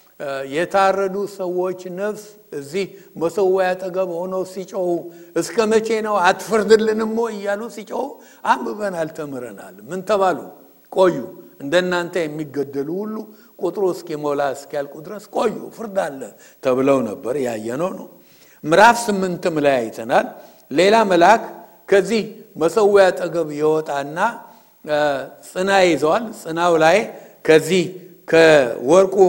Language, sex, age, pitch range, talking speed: English, male, 60-79, 155-200 Hz, 85 wpm